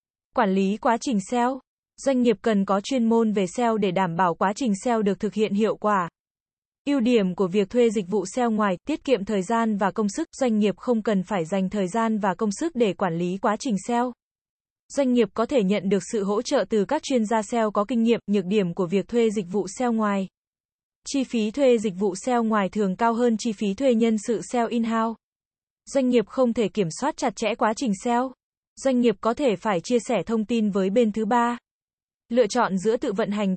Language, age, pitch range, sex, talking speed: Vietnamese, 20-39, 205-240 Hz, female, 230 wpm